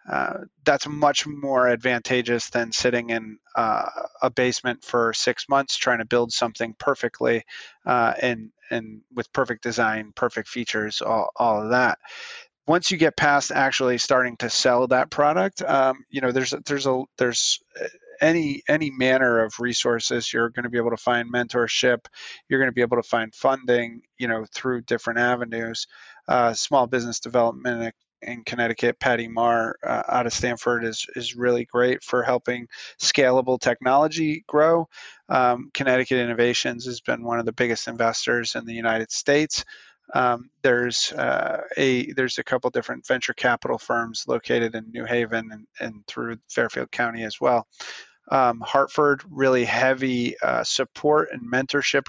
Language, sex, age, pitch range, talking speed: English, male, 30-49, 115-130 Hz, 165 wpm